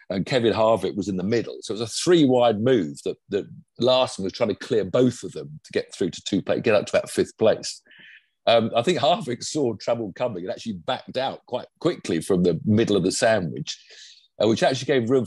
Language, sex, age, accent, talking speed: English, male, 50-69, British, 230 wpm